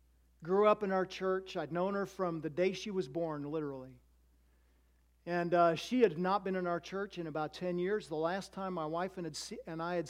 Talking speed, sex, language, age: 215 wpm, male, English, 50-69